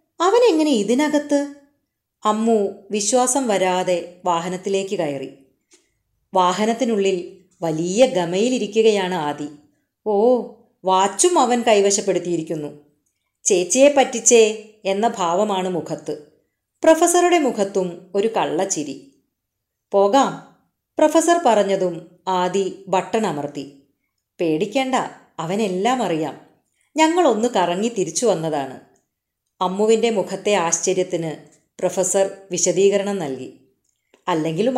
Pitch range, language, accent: 175-240 Hz, Malayalam, native